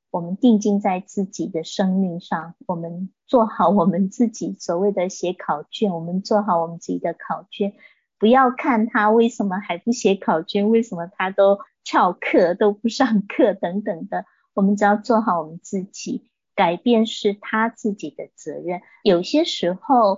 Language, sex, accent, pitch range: Chinese, female, American, 185-230 Hz